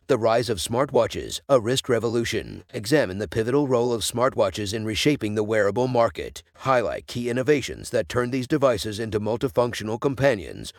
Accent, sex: American, male